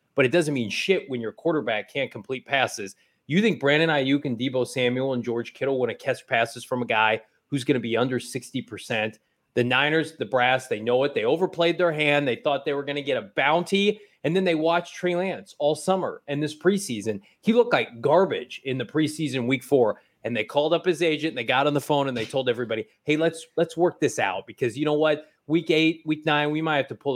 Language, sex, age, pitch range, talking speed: English, male, 30-49, 125-165 Hz, 240 wpm